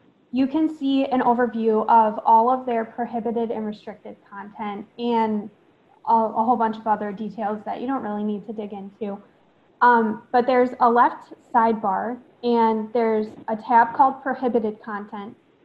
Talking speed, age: 155 wpm, 10-29